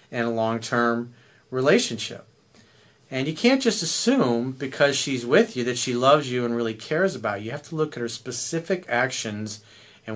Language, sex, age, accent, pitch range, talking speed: English, male, 40-59, American, 120-155 Hz, 185 wpm